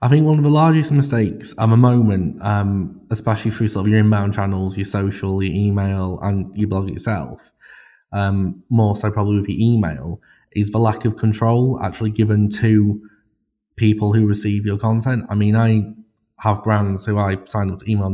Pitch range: 95-110 Hz